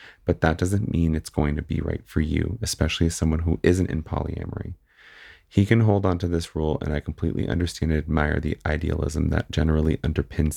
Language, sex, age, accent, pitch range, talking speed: English, male, 30-49, American, 75-90 Hz, 205 wpm